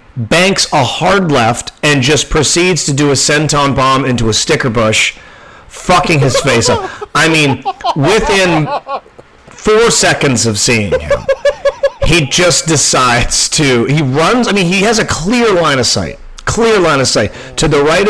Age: 40-59